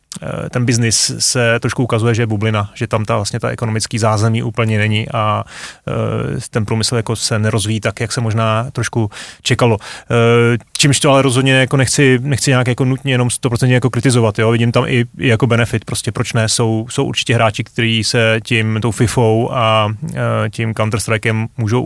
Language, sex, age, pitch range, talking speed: Czech, male, 30-49, 115-130 Hz, 190 wpm